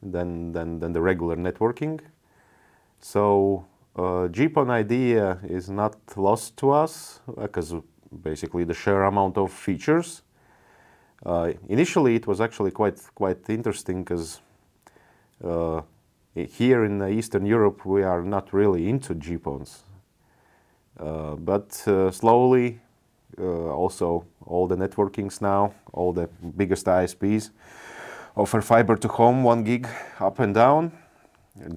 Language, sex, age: English, male, 30-49